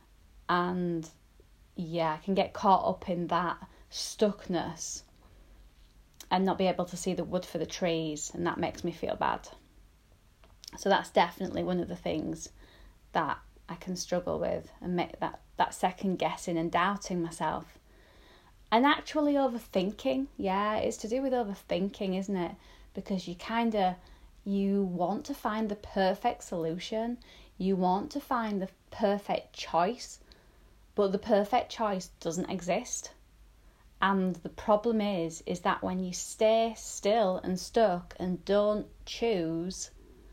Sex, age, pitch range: female, 30-49, 175-220 Hz